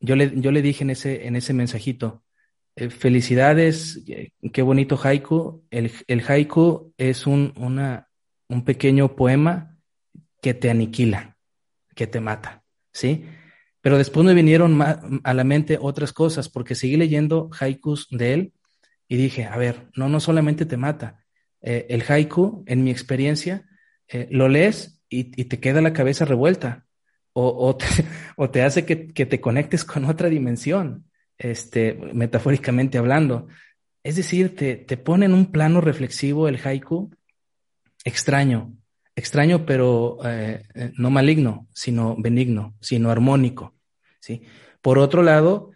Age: 30-49